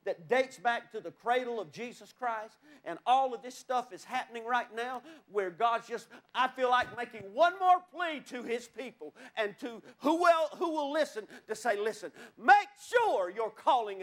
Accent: American